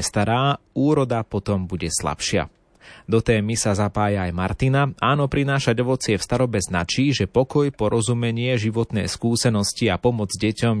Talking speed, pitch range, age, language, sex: 140 wpm, 100-120 Hz, 30-49, Slovak, male